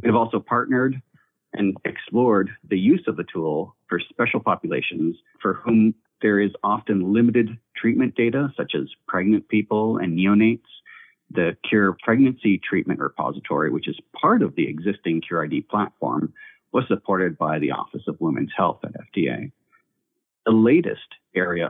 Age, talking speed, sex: 40-59, 150 wpm, male